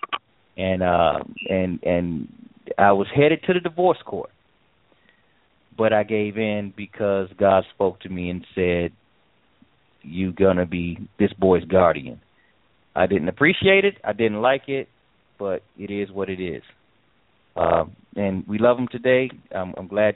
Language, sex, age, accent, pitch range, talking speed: English, male, 30-49, American, 95-120 Hz, 155 wpm